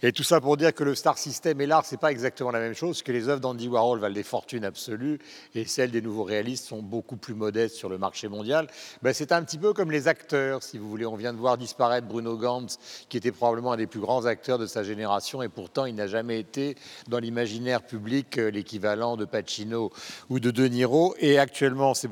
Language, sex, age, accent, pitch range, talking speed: French, male, 50-69, French, 110-140 Hz, 240 wpm